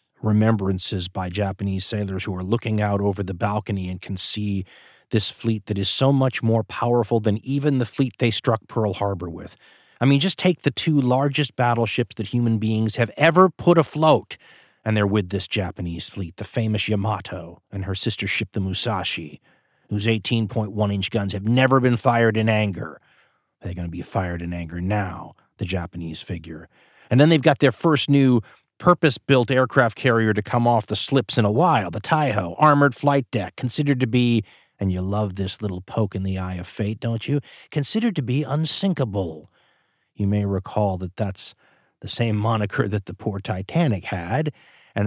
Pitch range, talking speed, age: 100-125 Hz, 185 wpm, 30-49